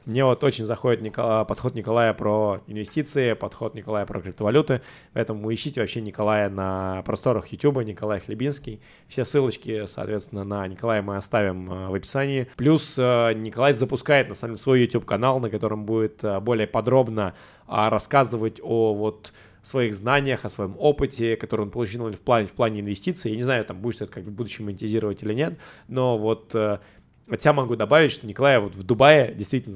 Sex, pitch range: male, 105-135 Hz